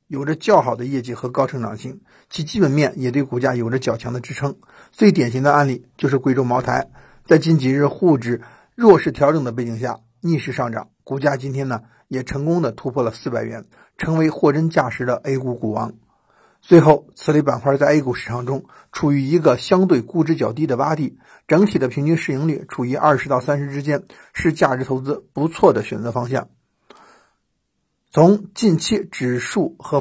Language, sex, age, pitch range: Chinese, male, 50-69, 125-160 Hz